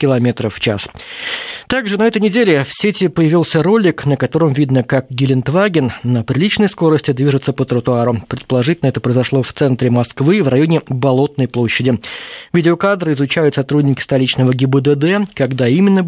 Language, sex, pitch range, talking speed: Russian, male, 125-165 Hz, 135 wpm